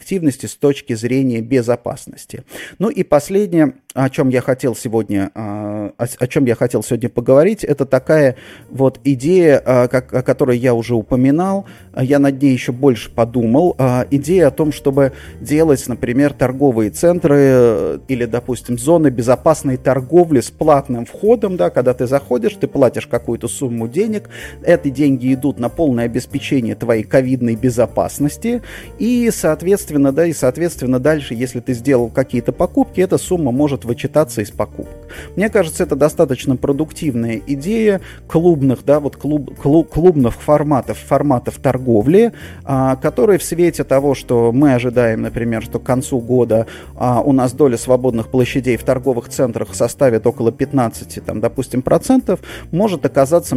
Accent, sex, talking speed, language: native, male, 145 wpm, Russian